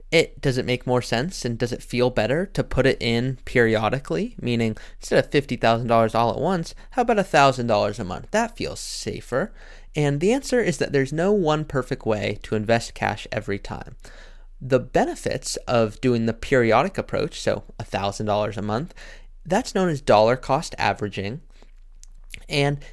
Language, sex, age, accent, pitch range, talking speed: English, male, 20-39, American, 115-175 Hz, 170 wpm